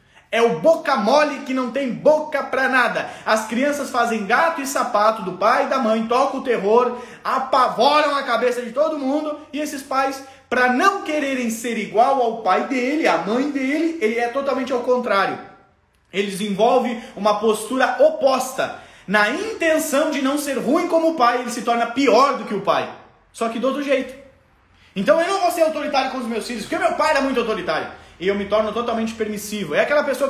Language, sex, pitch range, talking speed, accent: Portuguese, male, 225-295 Hz, 200 wpm, Brazilian